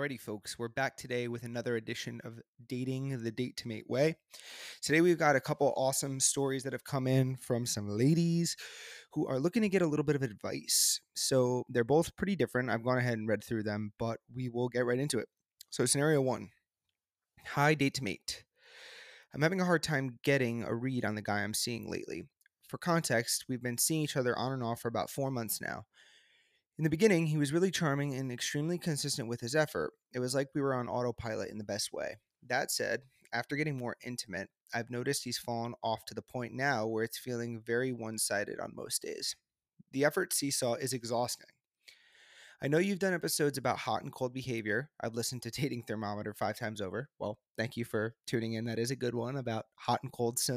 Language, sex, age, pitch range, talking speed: English, male, 30-49, 115-140 Hz, 210 wpm